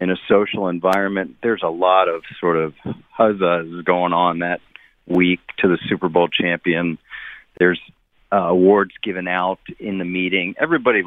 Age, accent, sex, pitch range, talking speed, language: 40-59, American, male, 100-145 Hz, 155 wpm, English